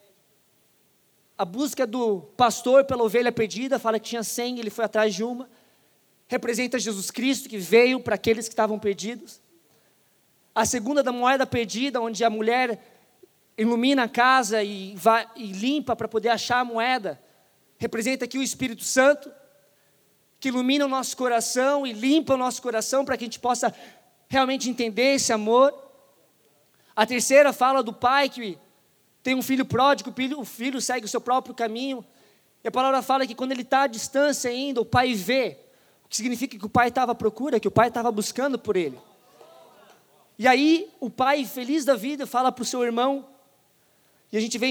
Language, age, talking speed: Portuguese, 20-39, 180 wpm